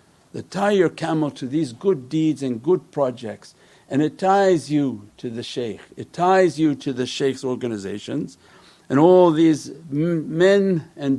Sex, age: male, 50-69